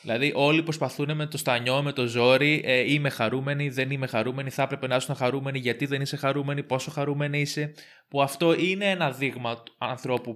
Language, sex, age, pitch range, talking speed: Greek, male, 20-39, 125-165 Hz, 195 wpm